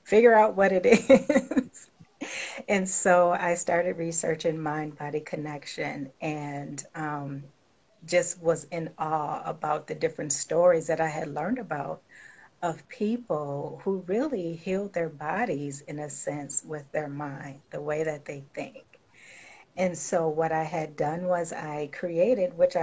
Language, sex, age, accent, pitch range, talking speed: English, female, 40-59, American, 155-185 Hz, 145 wpm